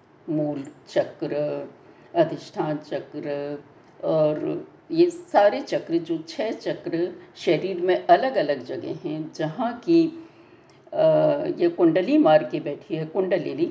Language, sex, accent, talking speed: Hindi, female, native, 115 wpm